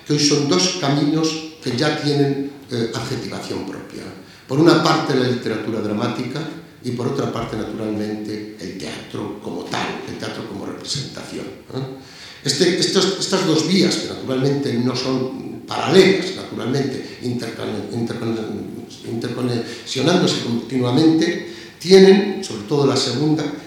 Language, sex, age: Spanish, male, 60-79